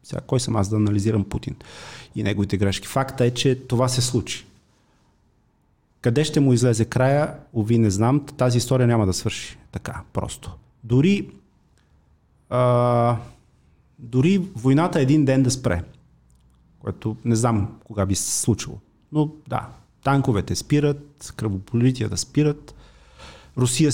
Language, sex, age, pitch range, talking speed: Bulgarian, male, 30-49, 100-135 Hz, 135 wpm